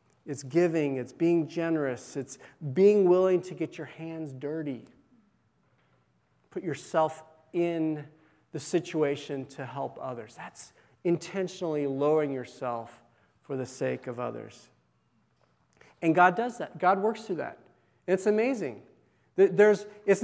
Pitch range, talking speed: 150-200 Hz, 120 wpm